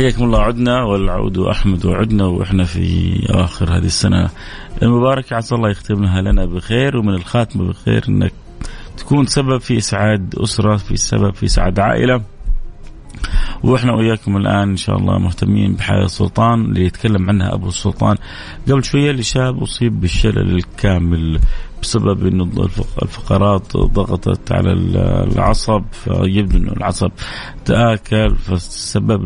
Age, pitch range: 30-49, 95-115 Hz